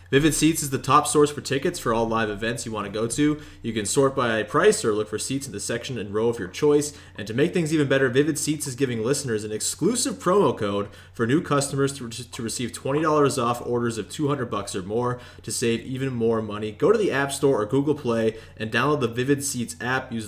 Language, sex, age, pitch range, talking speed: English, male, 30-49, 110-145 Hz, 245 wpm